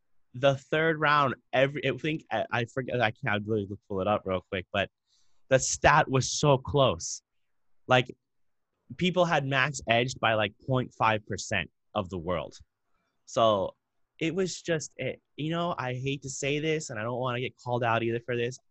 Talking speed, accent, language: 180 wpm, American, English